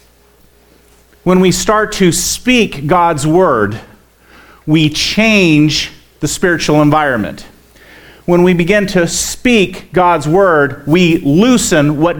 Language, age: English, 40-59